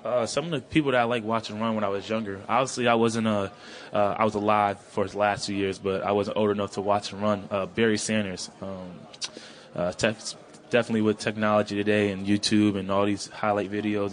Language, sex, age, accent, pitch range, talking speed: English, male, 20-39, American, 100-105 Hz, 220 wpm